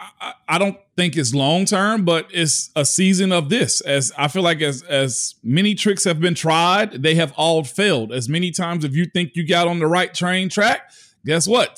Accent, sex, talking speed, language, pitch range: American, male, 215 wpm, English, 165-215 Hz